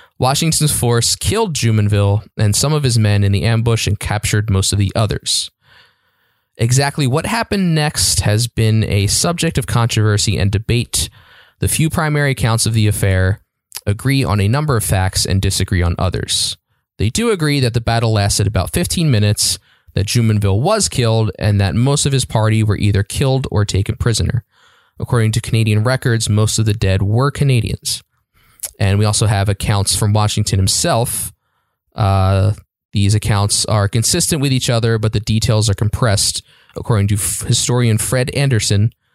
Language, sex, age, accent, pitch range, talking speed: English, male, 20-39, American, 100-125 Hz, 165 wpm